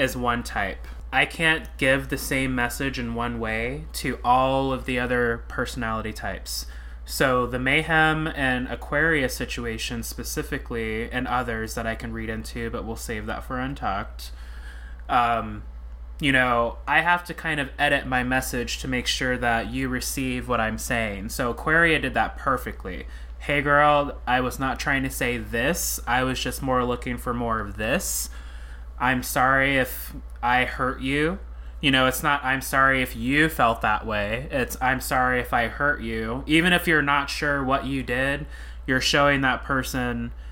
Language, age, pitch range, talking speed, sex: English, 20-39, 115-135 Hz, 175 wpm, male